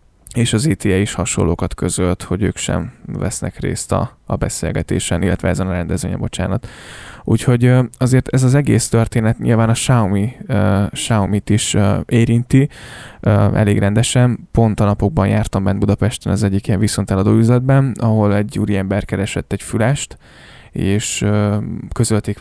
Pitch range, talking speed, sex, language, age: 95-115 Hz, 135 wpm, male, Hungarian, 20-39